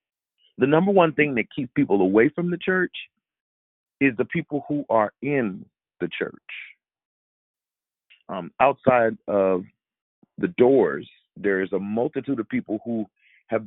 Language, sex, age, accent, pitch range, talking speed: English, male, 40-59, American, 100-140 Hz, 140 wpm